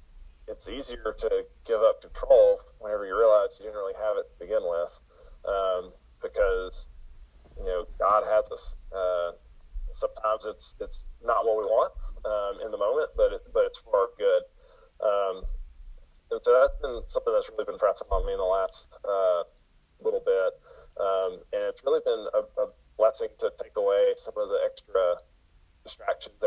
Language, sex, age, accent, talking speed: English, male, 30-49, American, 175 wpm